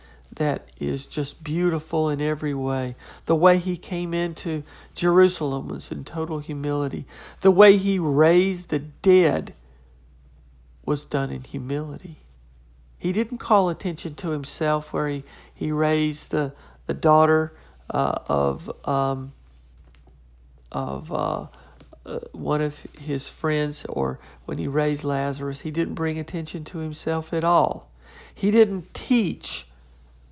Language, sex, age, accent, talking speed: English, male, 50-69, American, 130 wpm